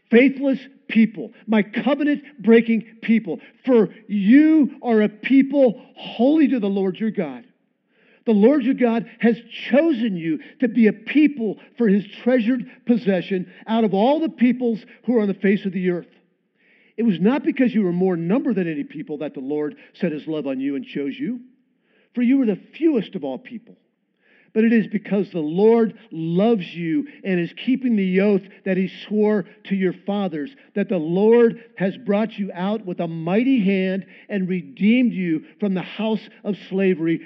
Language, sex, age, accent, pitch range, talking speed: English, male, 50-69, American, 195-245 Hz, 180 wpm